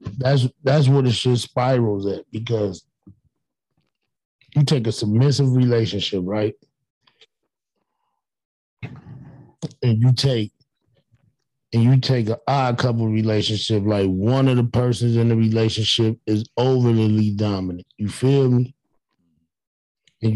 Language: English